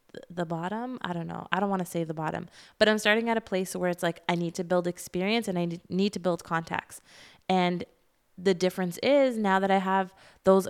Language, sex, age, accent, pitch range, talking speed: English, female, 20-39, American, 175-195 Hz, 230 wpm